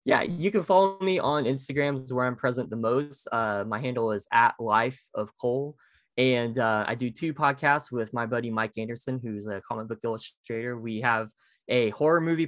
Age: 20-39